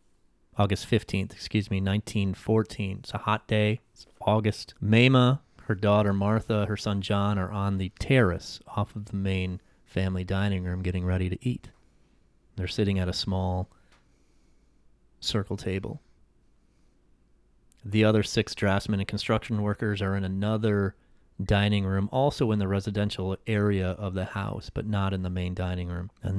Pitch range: 95-110 Hz